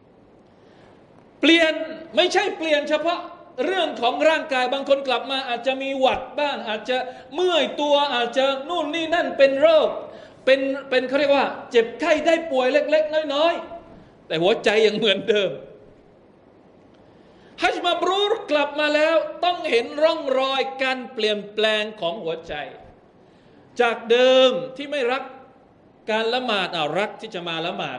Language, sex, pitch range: Thai, male, 200-290 Hz